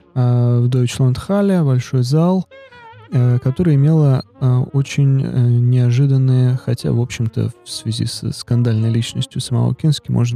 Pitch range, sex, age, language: 120-145 Hz, male, 20-39, Russian